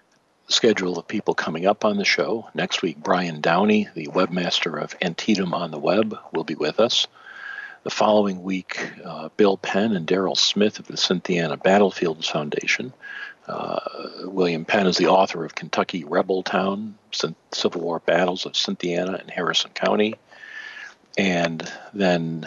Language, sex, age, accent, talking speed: English, male, 50-69, American, 150 wpm